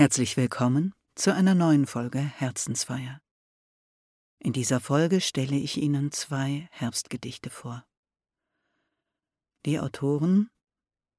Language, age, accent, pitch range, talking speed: German, 60-79, German, 140-170 Hz, 95 wpm